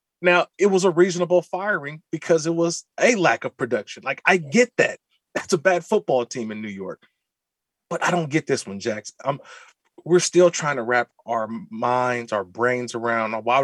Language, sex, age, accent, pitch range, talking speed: English, male, 30-49, American, 120-170 Hz, 195 wpm